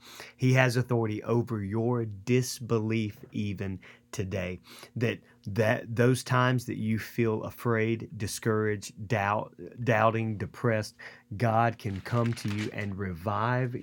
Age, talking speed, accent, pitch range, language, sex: 30-49, 115 wpm, American, 100-125 Hz, English, male